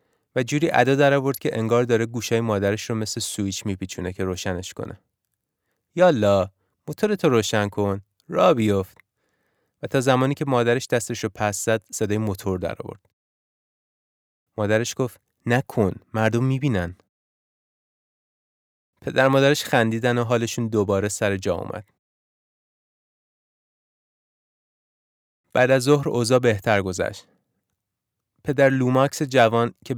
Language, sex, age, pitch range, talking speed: Persian, male, 30-49, 100-125 Hz, 120 wpm